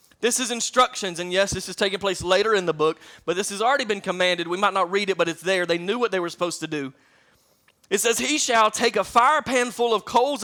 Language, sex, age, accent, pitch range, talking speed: English, male, 30-49, American, 185-235 Hz, 265 wpm